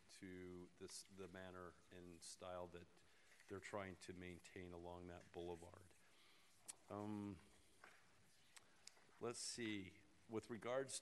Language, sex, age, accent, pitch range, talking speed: English, male, 50-69, American, 95-110 Hz, 100 wpm